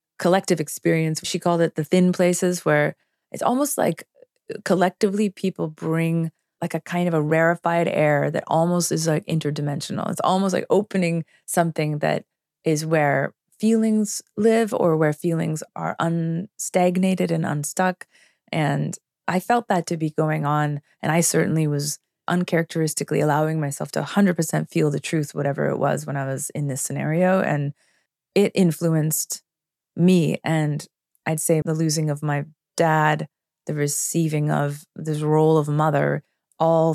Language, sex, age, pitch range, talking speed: English, female, 30-49, 150-180 Hz, 150 wpm